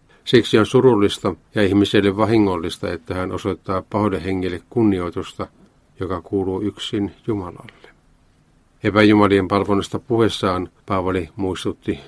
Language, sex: Finnish, male